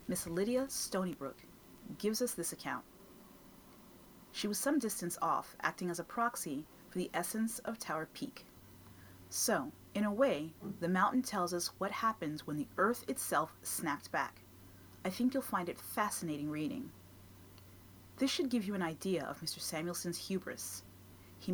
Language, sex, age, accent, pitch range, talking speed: English, female, 40-59, American, 145-205 Hz, 155 wpm